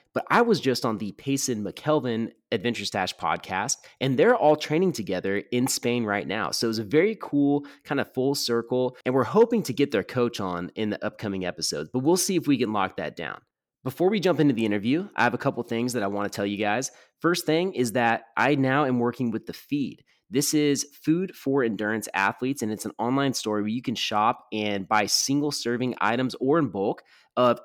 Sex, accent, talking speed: male, American, 225 wpm